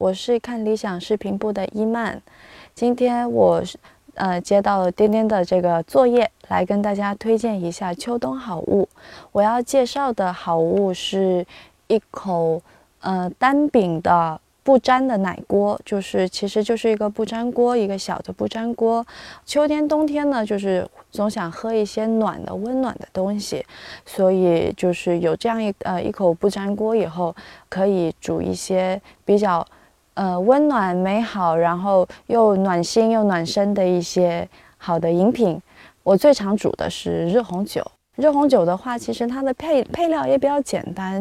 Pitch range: 180-235 Hz